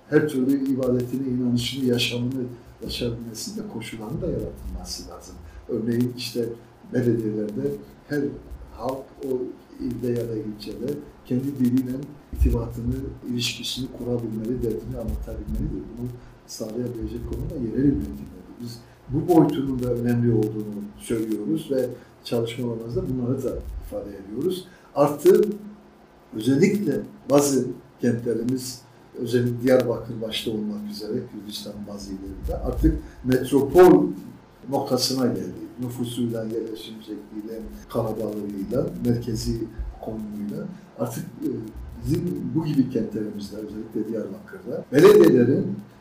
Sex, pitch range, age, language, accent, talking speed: male, 110-130 Hz, 60-79, Turkish, native, 95 wpm